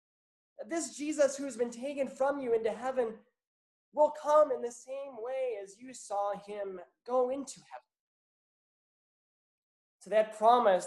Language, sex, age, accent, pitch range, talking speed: English, male, 20-39, American, 200-260 Hz, 145 wpm